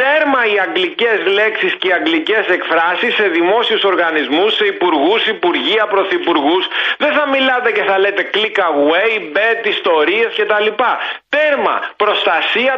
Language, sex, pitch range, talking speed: Greek, male, 190-275 Hz, 130 wpm